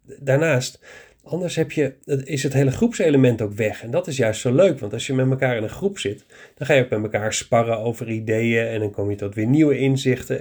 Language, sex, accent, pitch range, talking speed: Dutch, male, Dutch, 115-145 Hz, 240 wpm